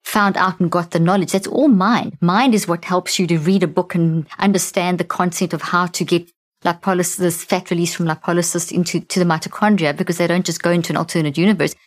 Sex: female